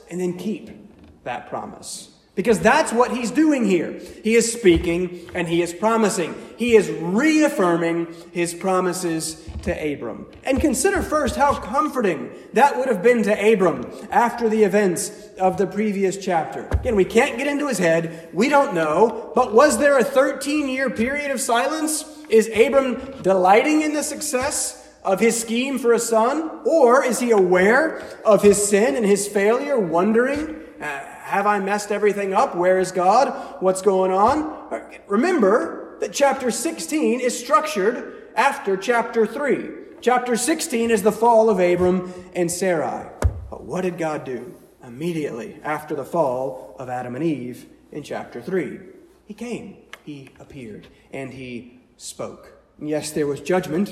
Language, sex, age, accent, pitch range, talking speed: English, male, 30-49, American, 180-255 Hz, 160 wpm